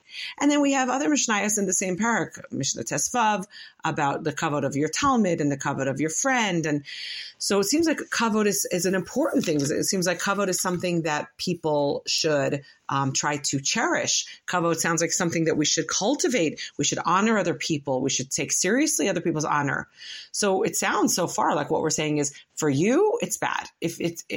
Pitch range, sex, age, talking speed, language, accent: 155-230 Hz, female, 40-59, 205 wpm, English, American